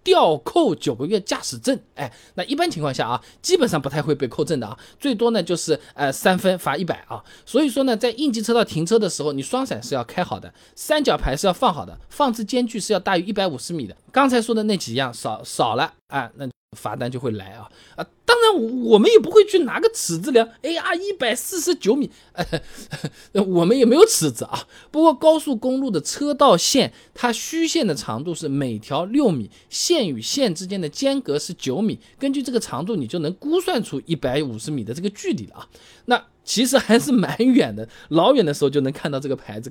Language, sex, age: Chinese, male, 20-39